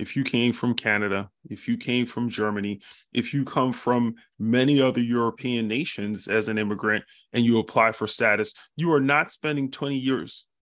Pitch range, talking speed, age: 120-150 Hz, 180 wpm, 20-39